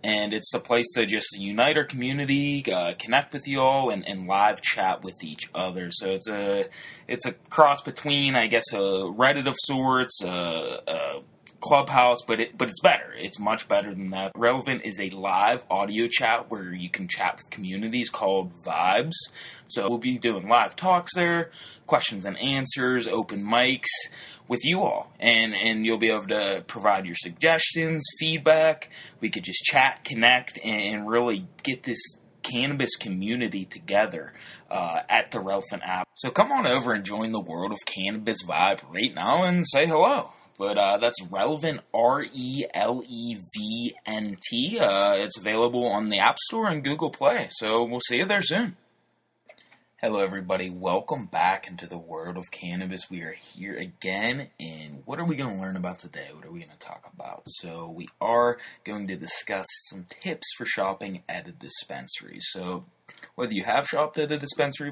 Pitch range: 95-140 Hz